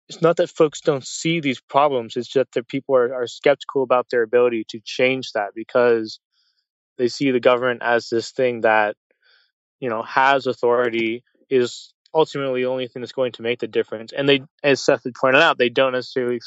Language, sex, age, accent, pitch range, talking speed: English, male, 20-39, American, 115-135 Hz, 200 wpm